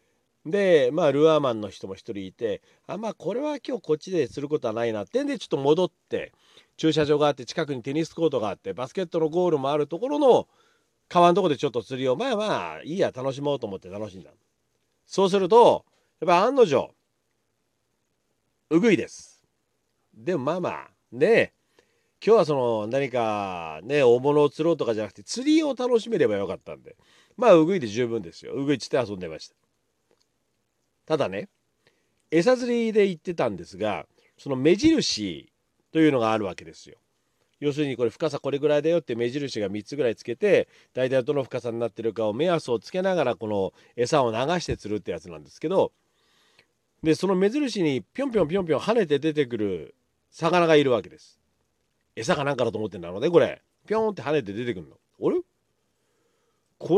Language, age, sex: Japanese, 40-59, male